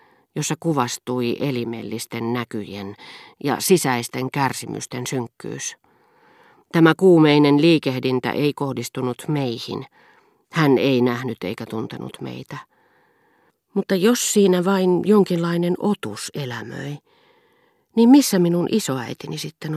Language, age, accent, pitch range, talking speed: Finnish, 40-59, native, 130-175 Hz, 95 wpm